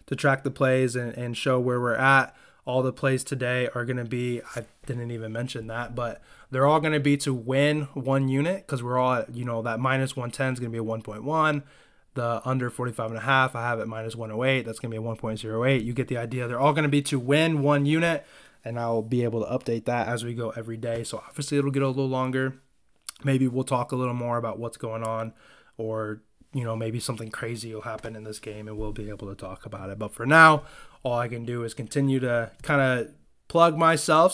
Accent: American